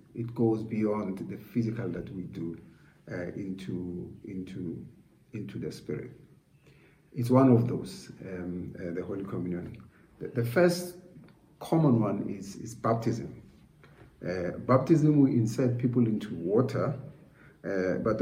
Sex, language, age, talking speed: male, English, 50-69, 130 wpm